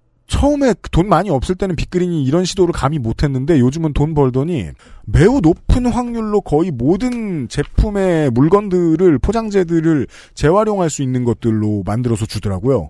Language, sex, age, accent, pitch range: Korean, male, 40-59, native, 125-190 Hz